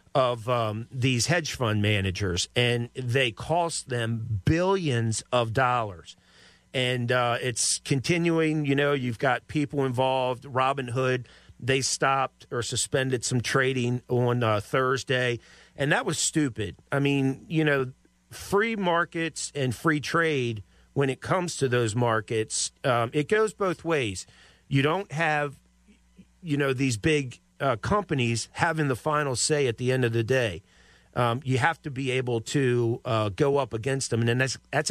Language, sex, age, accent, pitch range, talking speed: English, male, 40-59, American, 115-145 Hz, 160 wpm